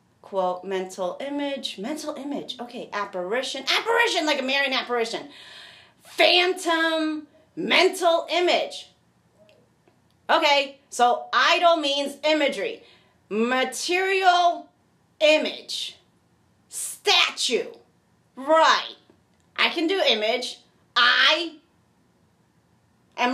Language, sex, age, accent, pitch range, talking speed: English, female, 30-49, American, 235-325 Hz, 75 wpm